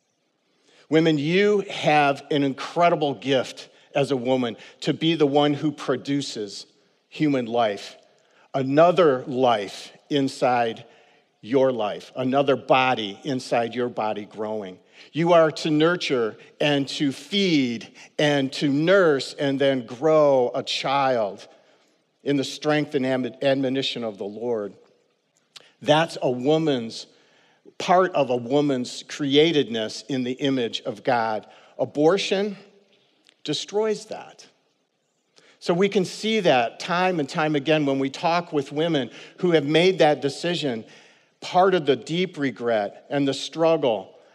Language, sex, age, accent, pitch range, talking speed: English, male, 50-69, American, 130-165 Hz, 125 wpm